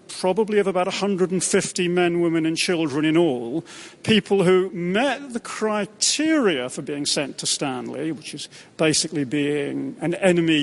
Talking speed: 145 wpm